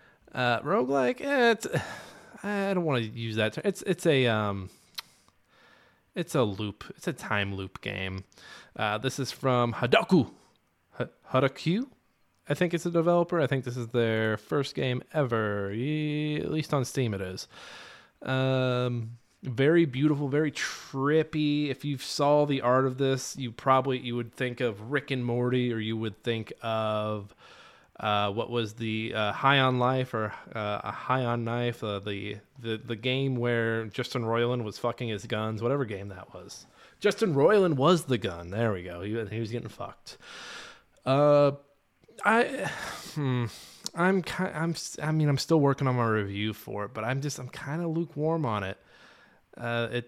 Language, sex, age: English, male, 20-39